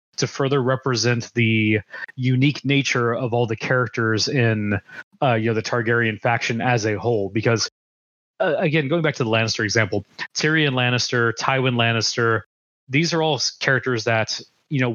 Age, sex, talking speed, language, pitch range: 30-49, male, 160 wpm, English, 110-130 Hz